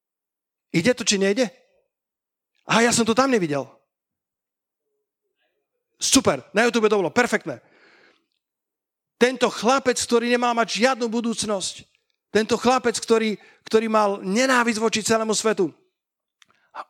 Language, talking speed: Slovak, 115 wpm